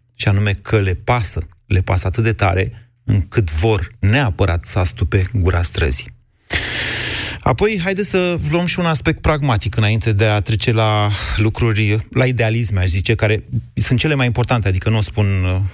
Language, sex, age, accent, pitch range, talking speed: Romanian, male, 30-49, native, 100-120 Hz, 170 wpm